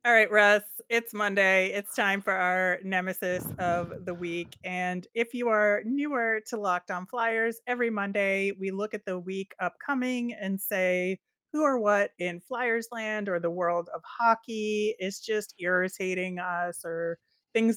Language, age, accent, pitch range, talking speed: English, 30-49, American, 180-215 Hz, 165 wpm